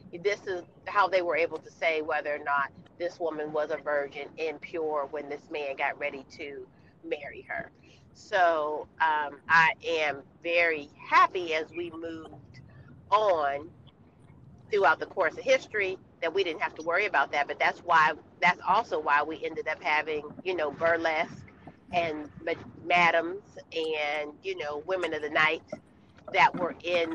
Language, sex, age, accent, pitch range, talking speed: English, female, 40-59, American, 155-195 Hz, 165 wpm